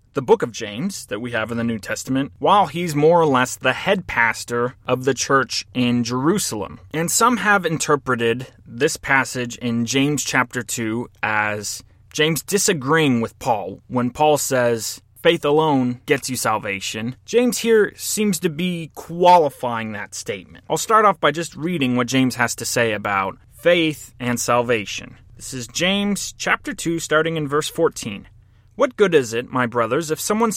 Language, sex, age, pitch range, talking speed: English, male, 30-49, 120-190 Hz, 170 wpm